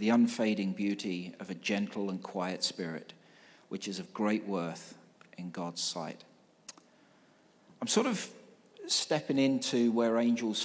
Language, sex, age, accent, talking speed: English, male, 40-59, British, 135 wpm